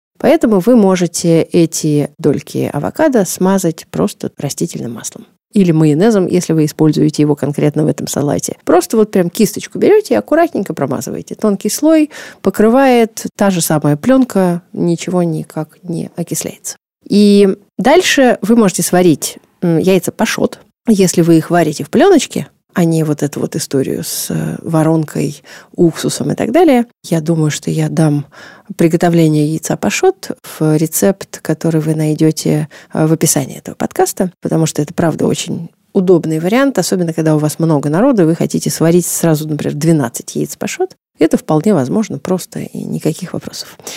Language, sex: Russian, female